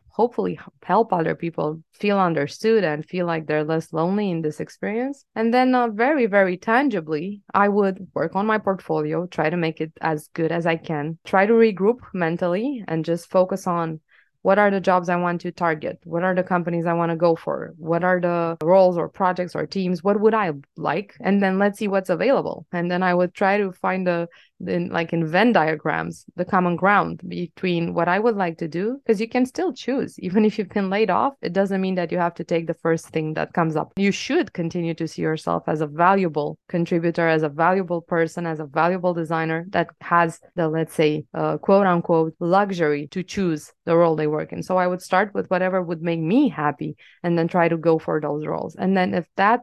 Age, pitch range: 20-39, 165-195 Hz